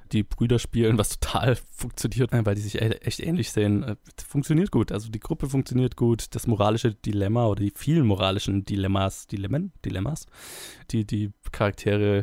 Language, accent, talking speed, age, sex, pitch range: German, German, 150 wpm, 20-39, male, 105-125 Hz